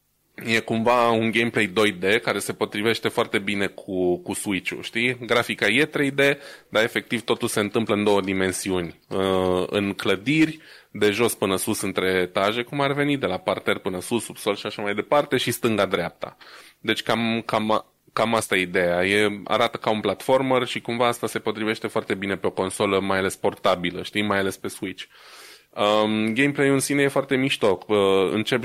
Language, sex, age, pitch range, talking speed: Romanian, male, 20-39, 95-115 Hz, 180 wpm